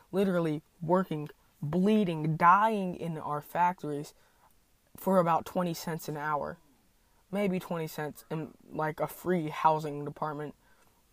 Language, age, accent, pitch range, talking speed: English, 20-39, American, 155-190 Hz, 120 wpm